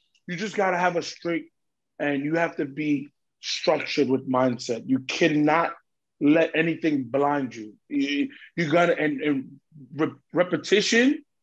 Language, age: English, 30-49